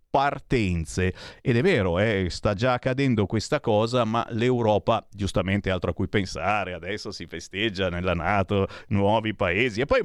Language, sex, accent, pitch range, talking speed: Italian, male, native, 110-165 Hz, 155 wpm